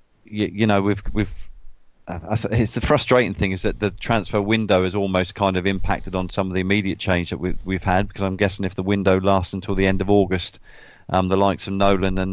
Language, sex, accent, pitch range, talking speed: English, male, British, 95-105 Hz, 230 wpm